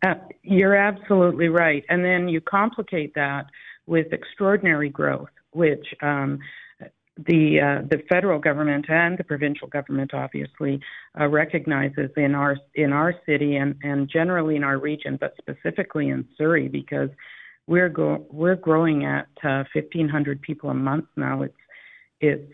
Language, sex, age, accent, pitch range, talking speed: English, female, 50-69, American, 140-160 Hz, 145 wpm